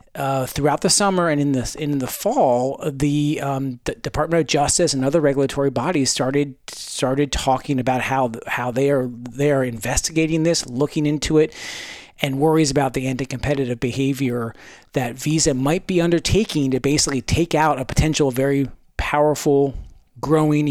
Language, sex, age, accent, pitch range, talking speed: English, male, 40-59, American, 130-155 Hz, 160 wpm